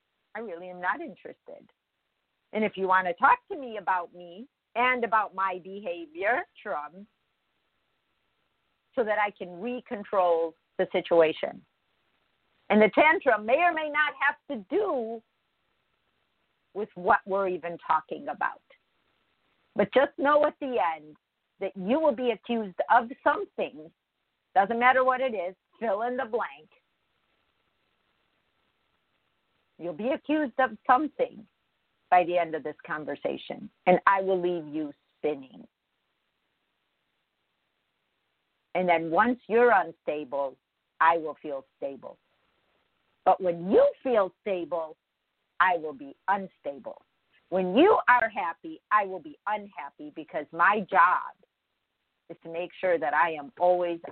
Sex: female